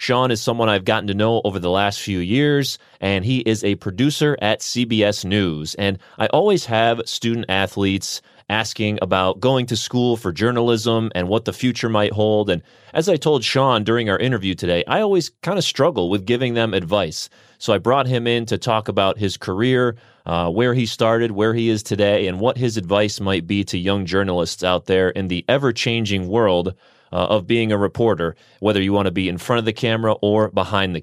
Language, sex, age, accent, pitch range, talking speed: English, male, 30-49, American, 100-115 Hz, 210 wpm